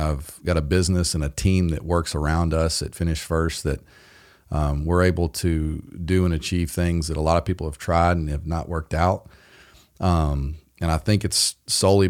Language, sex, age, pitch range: English, male, 40-59, 80-95 Hz